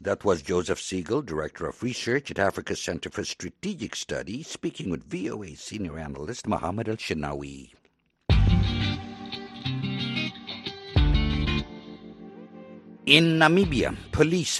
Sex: male